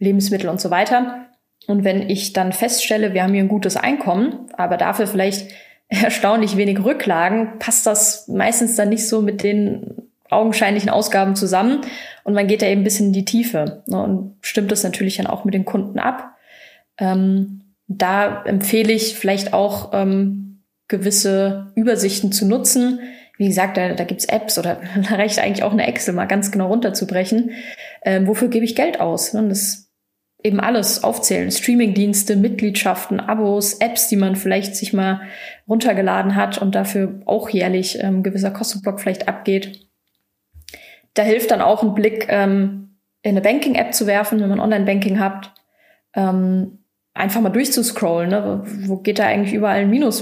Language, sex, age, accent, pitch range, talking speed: German, female, 20-39, German, 195-225 Hz, 165 wpm